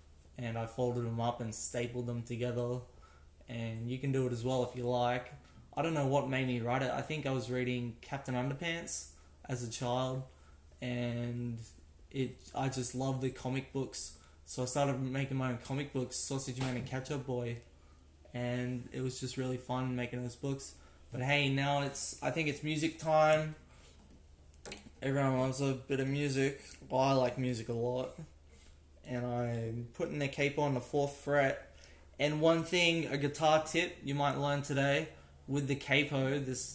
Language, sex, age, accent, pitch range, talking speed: English, male, 20-39, Australian, 120-140 Hz, 180 wpm